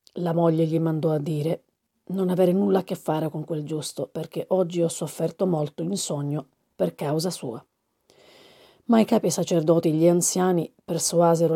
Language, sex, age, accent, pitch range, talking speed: Italian, female, 40-59, native, 160-190 Hz, 180 wpm